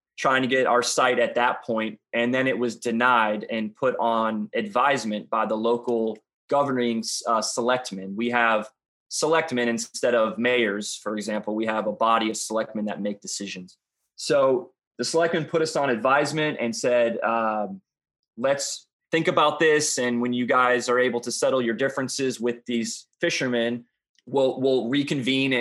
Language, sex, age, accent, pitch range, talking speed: English, male, 20-39, American, 115-135 Hz, 165 wpm